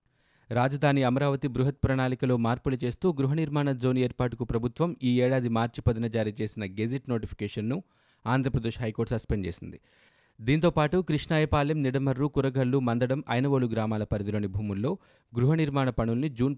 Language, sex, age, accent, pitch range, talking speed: Telugu, male, 30-49, native, 110-135 Hz, 125 wpm